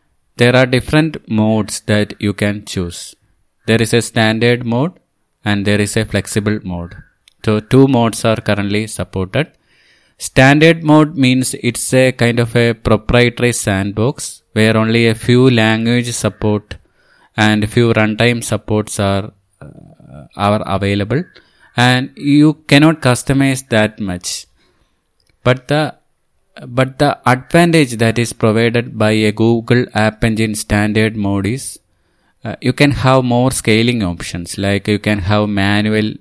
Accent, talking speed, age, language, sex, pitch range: Indian, 140 wpm, 20-39, English, male, 105-125 Hz